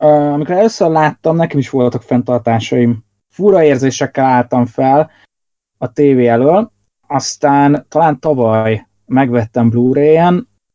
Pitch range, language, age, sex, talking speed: 115-140 Hz, Hungarian, 20-39, male, 105 wpm